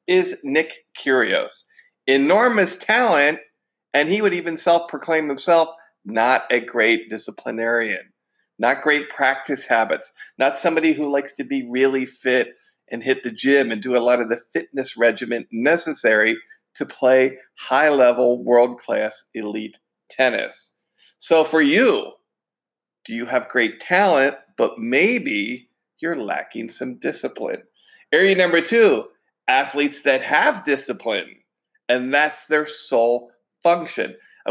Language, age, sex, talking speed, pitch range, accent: English, 40-59, male, 125 wpm, 125-170 Hz, American